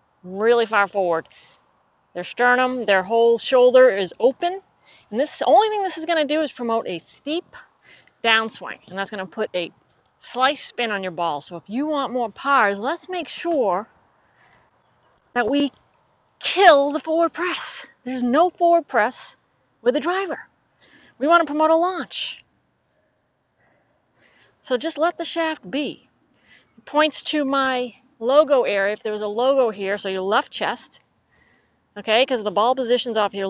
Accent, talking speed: American, 165 wpm